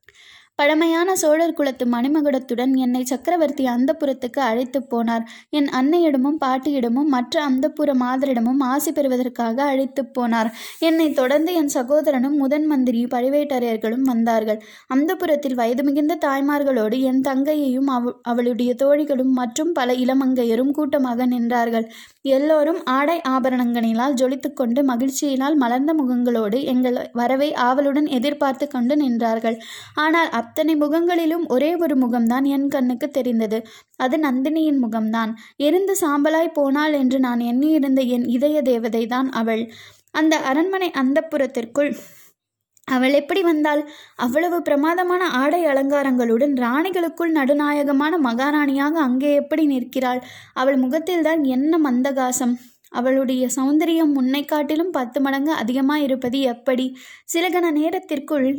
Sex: female